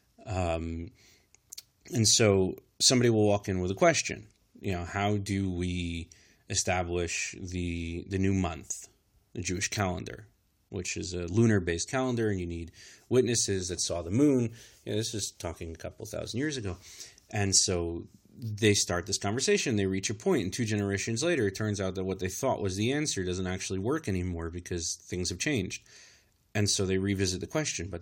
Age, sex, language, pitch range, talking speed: 30-49, male, English, 90-110 Hz, 185 wpm